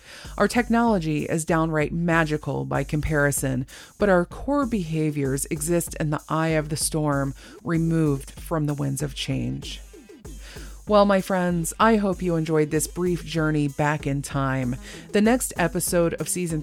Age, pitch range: 30-49, 150-195 Hz